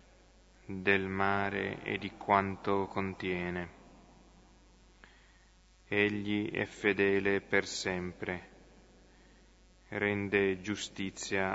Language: Italian